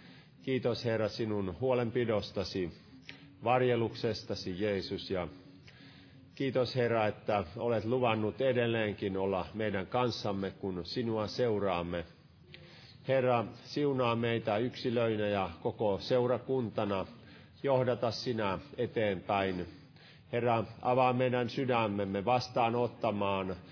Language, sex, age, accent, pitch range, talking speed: Finnish, male, 50-69, native, 105-130 Hz, 85 wpm